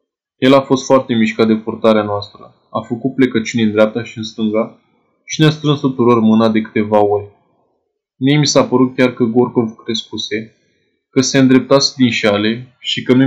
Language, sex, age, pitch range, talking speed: Romanian, male, 20-39, 110-130 Hz, 180 wpm